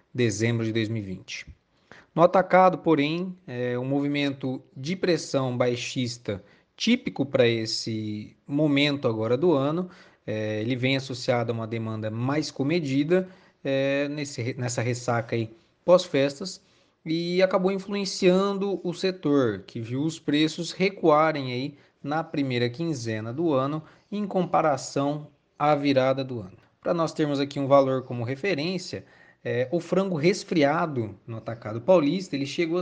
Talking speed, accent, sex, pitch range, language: 130 wpm, Brazilian, male, 125-175 Hz, Portuguese